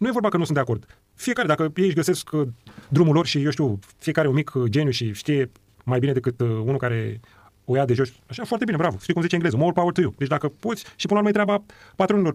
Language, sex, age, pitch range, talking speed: Romanian, male, 30-49, 120-170 Hz, 275 wpm